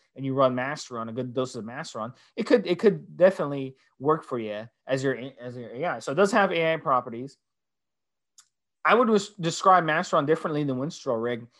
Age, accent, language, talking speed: 20-39, American, English, 190 wpm